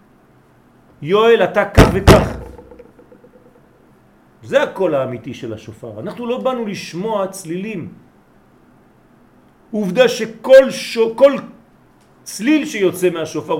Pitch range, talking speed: 160-230 Hz, 90 wpm